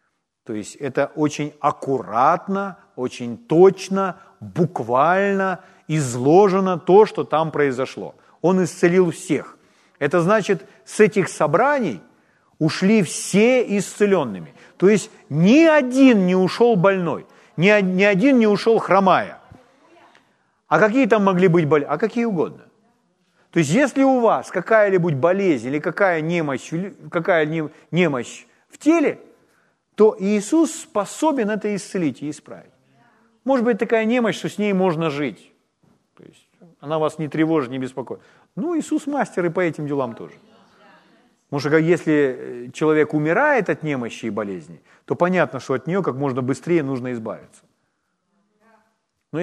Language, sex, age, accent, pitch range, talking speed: Ukrainian, male, 40-59, native, 150-210 Hz, 135 wpm